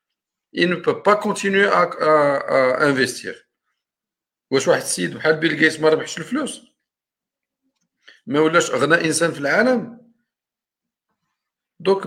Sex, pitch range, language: male, 145-205 Hz, Arabic